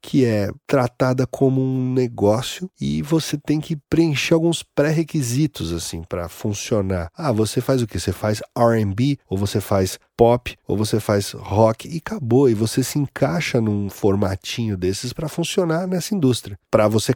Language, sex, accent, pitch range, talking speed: Portuguese, male, Brazilian, 100-135 Hz, 165 wpm